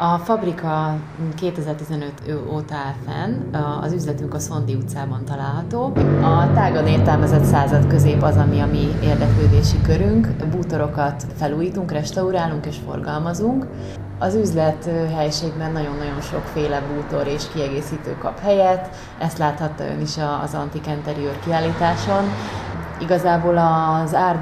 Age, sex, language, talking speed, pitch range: 30-49, female, Hungarian, 120 wpm, 140-160 Hz